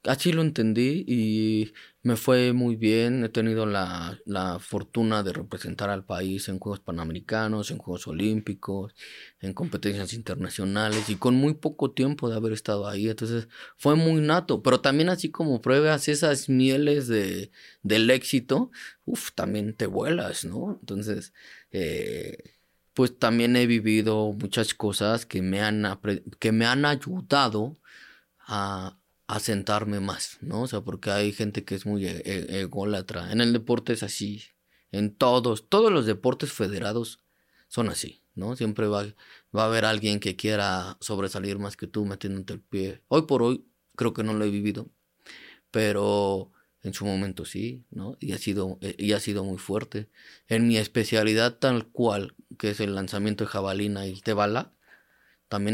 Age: 20-39